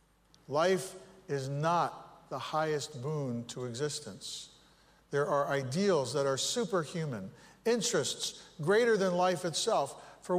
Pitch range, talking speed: 130-175 Hz, 115 wpm